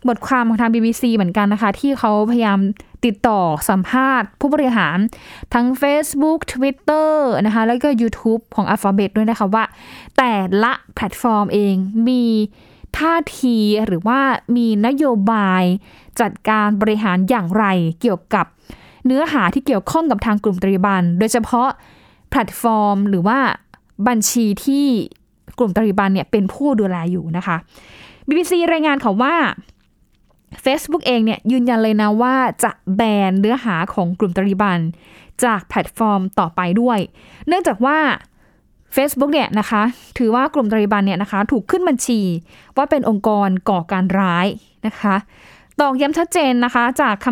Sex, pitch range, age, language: female, 200-255 Hz, 10-29, Thai